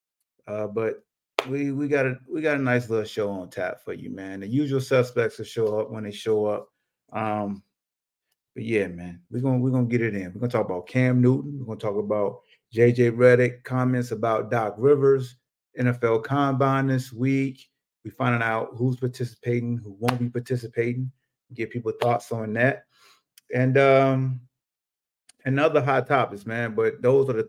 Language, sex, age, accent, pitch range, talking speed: English, male, 30-49, American, 110-135 Hz, 180 wpm